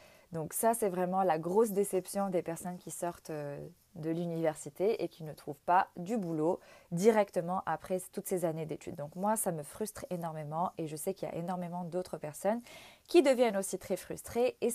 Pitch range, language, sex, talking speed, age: 165-200 Hz, Arabic, female, 190 wpm, 20-39